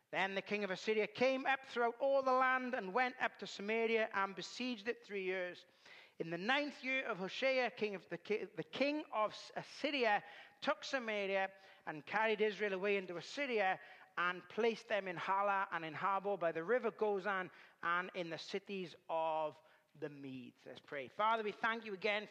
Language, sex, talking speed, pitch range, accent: English, male, 180 wpm, 185-225 Hz, British